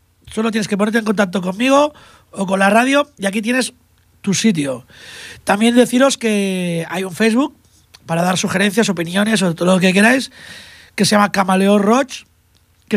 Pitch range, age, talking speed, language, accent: 185-235 Hz, 30-49, 170 wpm, Spanish, Spanish